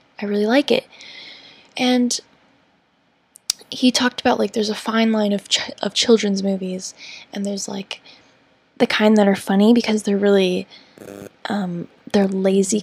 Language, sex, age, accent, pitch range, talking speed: English, female, 10-29, American, 200-240 Hz, 150 wpm